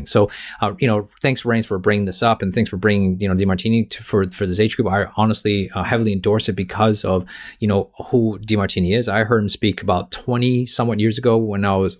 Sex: male